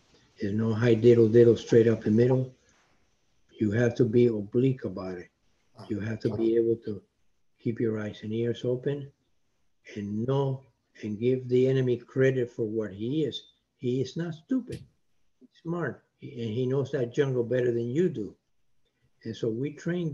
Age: 60-79